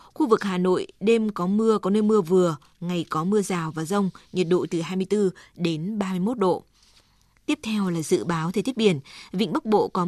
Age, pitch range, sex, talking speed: 20-39, 175-205 Hz, female, 215 wpm